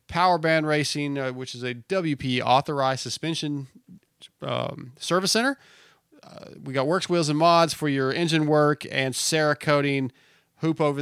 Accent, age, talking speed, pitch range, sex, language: American, 30-49, 150 wpm, 125-155 Hz, male, English